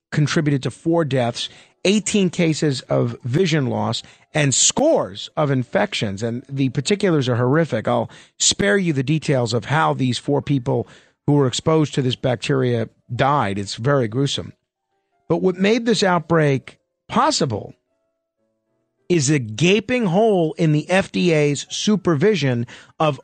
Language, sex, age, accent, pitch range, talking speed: English, male, 50-69, American, 135-200 Hz, 135 wpm